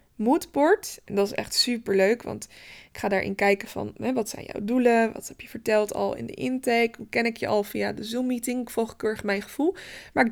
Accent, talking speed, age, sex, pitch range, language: Dutch, 240 wpm, 20-39, female, 205-240 Hz, Dutch